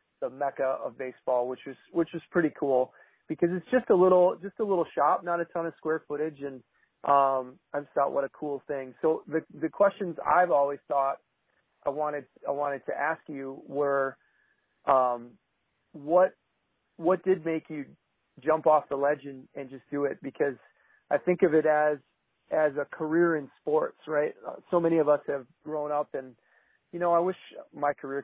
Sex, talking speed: male, 190 wpm